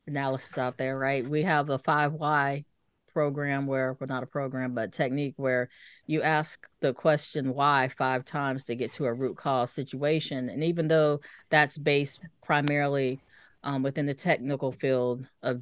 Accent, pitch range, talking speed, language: American, 135-165 Hz, 170 wpm, English